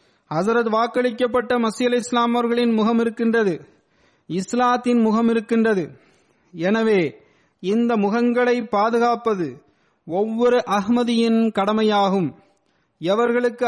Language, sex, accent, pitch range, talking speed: Tamil, male, native, 205-235 Hz, 75 wpm